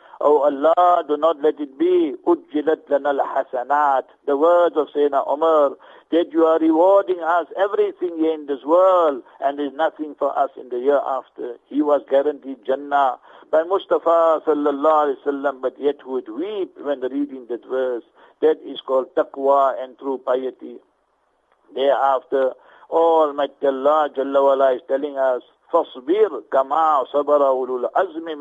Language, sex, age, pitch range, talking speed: English, male, 50-69, 135-170 Hz, 145 wpm